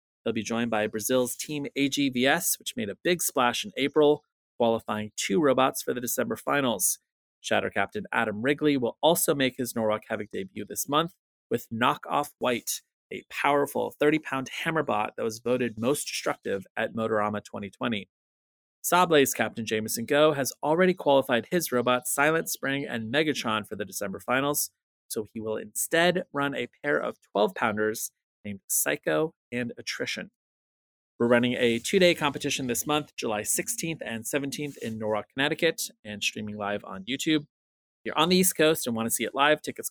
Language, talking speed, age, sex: English, 165 wpm, 30-49, male